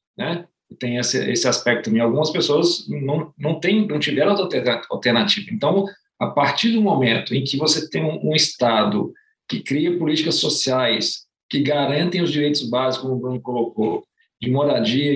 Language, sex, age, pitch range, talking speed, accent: Portuguese, male, 50-69, 130-165 Hz, 165 wpm, Brazilian